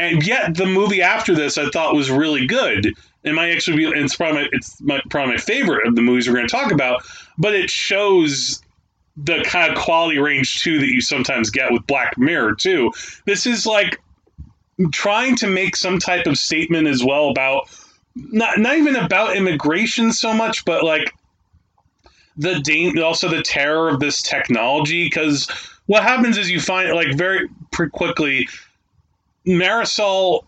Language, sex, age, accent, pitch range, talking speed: English, male, 30-49, American, 140-180 Hz, 175 wpm